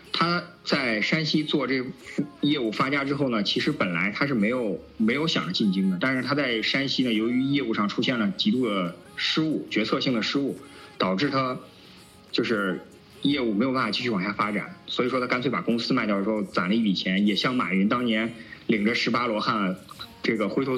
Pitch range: 105-130 Hz